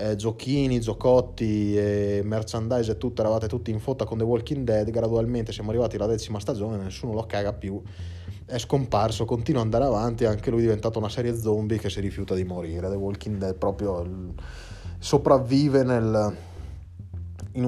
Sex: male